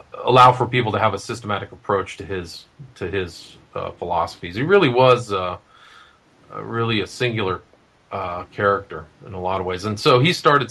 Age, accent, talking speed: 40-59, American, 180 wpm